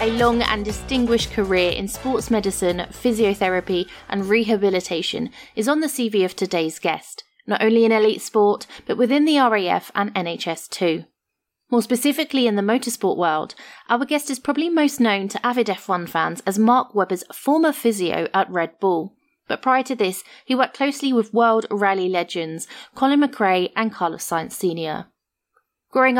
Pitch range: 185-235 Hz